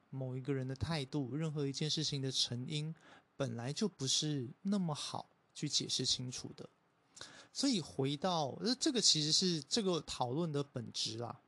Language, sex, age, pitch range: Chinese, male, 20-39, 135-170 Hz